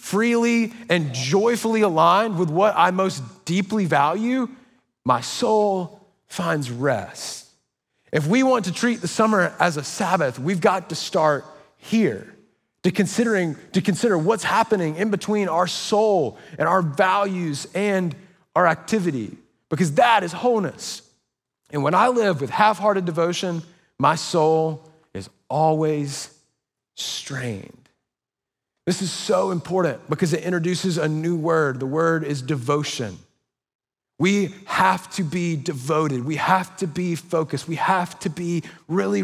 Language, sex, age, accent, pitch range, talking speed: English, male, 30-49, American, 155-195 Hz, 140 wpm